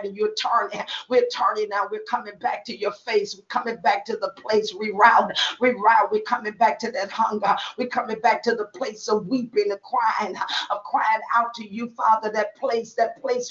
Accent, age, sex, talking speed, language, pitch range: American, 40-59, female, 205 wpm, English, 205-250 Hz